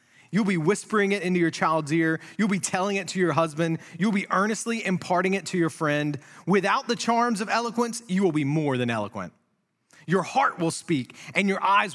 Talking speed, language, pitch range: 205 wpm, English, 130-185 Hz